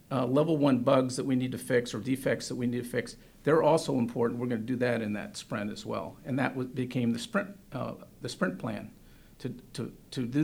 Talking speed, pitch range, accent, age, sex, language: 240 wpm, 125-160 Hz, American, 50-69, male, English